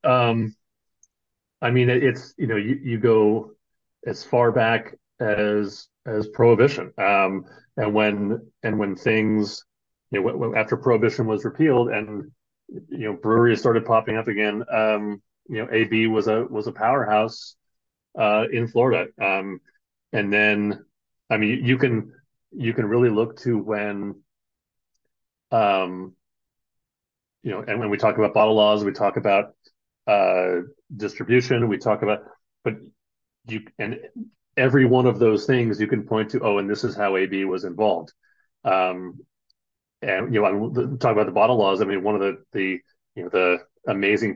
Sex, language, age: male, English, 30-49